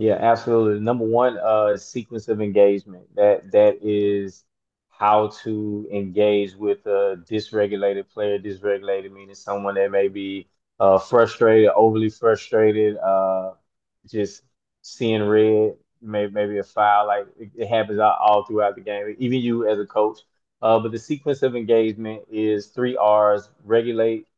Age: 20-39